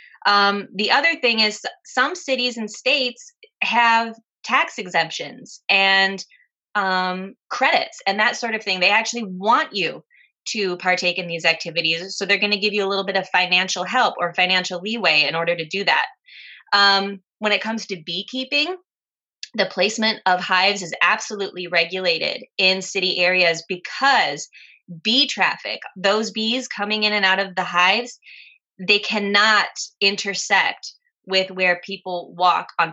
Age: 20-39